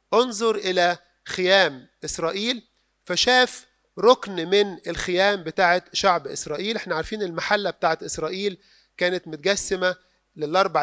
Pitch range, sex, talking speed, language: 165-215 Hz, male, 105 wpm, Arabic